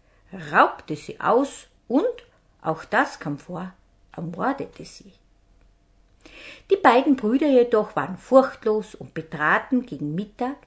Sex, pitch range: female, 160-220 Hz